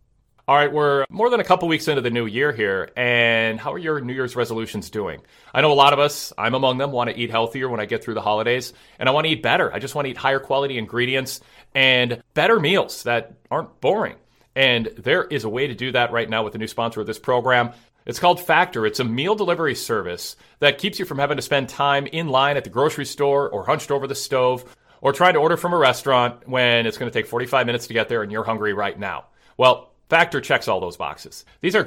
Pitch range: 120-150 Hz